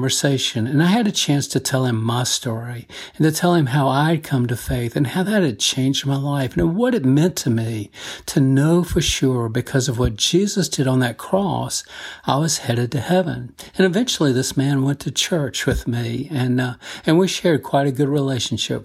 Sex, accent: male, American